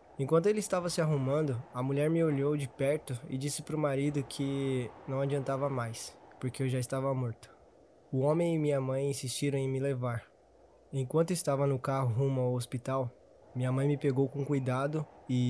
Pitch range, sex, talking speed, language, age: 130-145 Hz, male, 185 wpm, Portuguese, 20-39